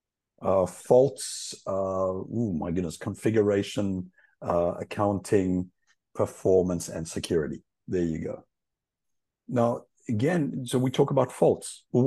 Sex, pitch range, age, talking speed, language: male, 90-120 Hz, 60-79, 115 wpm, English